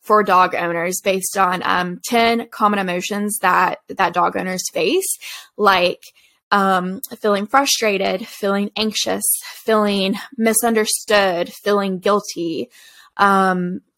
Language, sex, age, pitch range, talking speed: English, female, 10-29, 195-235 Hz, 105 wpm